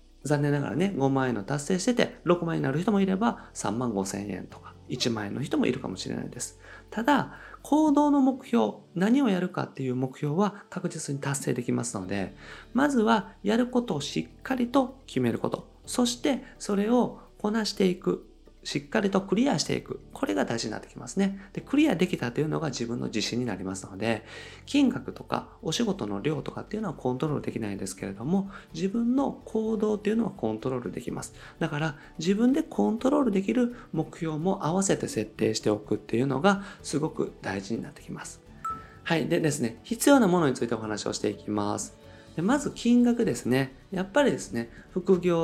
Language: Japanese